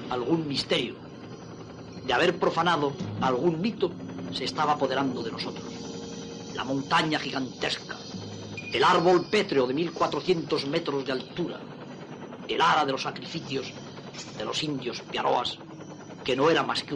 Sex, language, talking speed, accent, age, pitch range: female, Spanish, 130 wpm, Spanish, 40-59, 150-200 Hz